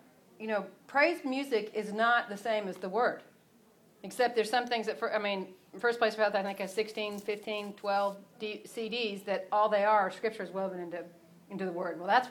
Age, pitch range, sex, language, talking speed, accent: 40-59, 185-230 Hz, female, English, 215 wpm, American